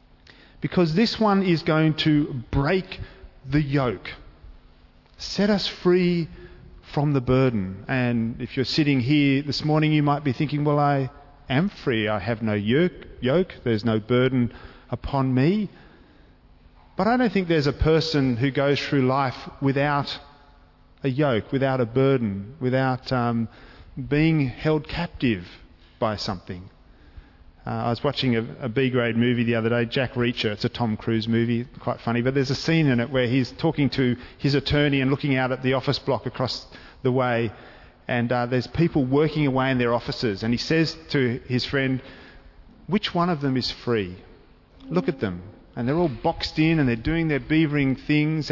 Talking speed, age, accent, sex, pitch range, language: 175 wpm, 40-59, Australian, male, 120-155 Hz, English